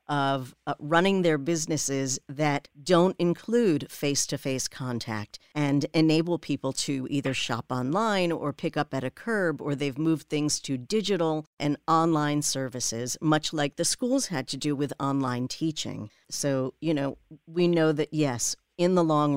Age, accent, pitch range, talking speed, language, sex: 50-69, American, 135-160 Hz, 160 wpm, English, female